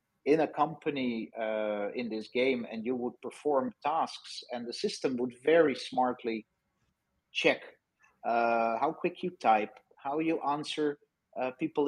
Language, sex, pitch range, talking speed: English, male, 115-145 Hz, 145 wpm